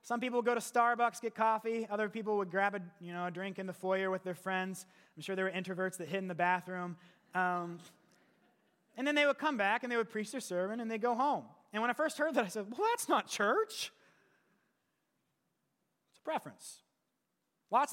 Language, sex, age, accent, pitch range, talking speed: English, male, 30-49, American, 190-245 Hz, 220 wpm